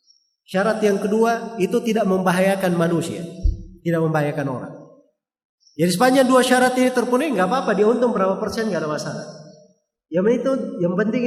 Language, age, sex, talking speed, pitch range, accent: Indonesian, 30-49, male, 150 wpm, 180-255 Hz, native